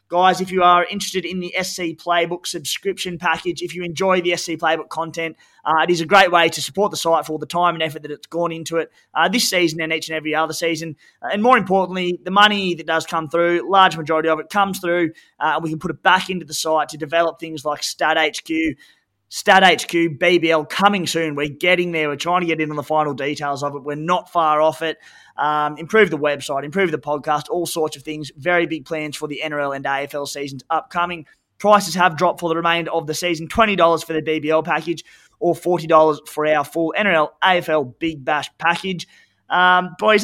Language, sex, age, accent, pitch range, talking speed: English, male, 20-39, Australian, 155-180 Hz, 220 wpm